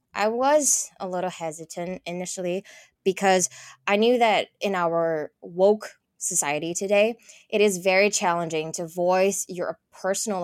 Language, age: English, 20-39